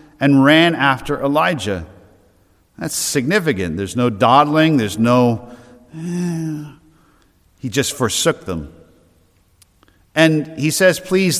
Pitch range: 95-140 Hz